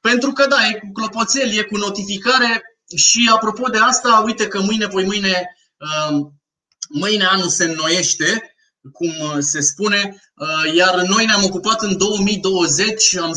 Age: 20-39